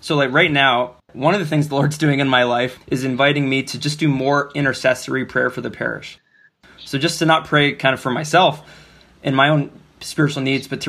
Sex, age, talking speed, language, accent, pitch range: male, 20-39, 230 wpm, English, American, 130-160 Hz